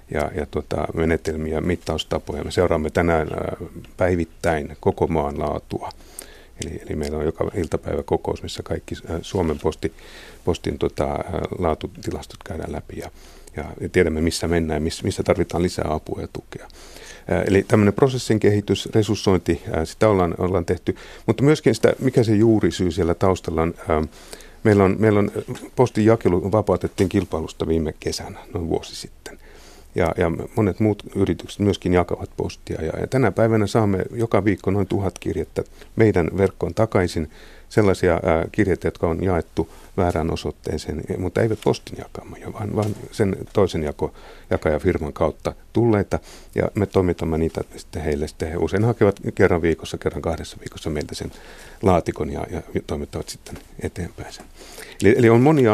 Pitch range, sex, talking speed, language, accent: 80-105 Hz, male, 150 wpm, Finnish, native